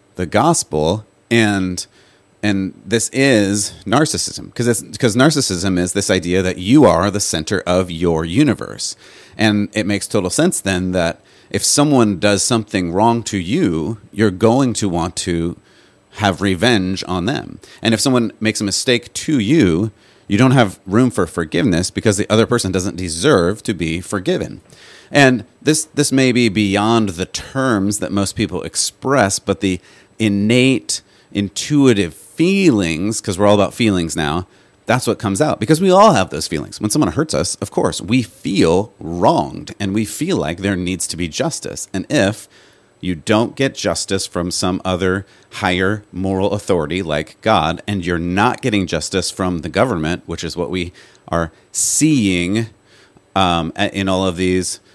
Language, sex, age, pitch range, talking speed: English, male, 30-49, 90-110 Hz, 165 wpm